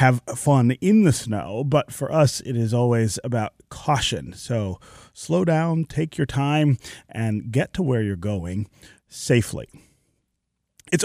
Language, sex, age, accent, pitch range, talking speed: English, male, 30-49, American, 115-170 Hz, 145 wpm